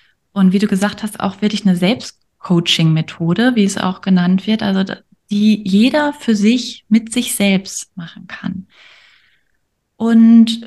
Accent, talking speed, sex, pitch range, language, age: German, 140 wpm, female, 195-235 Hz, German, 20-39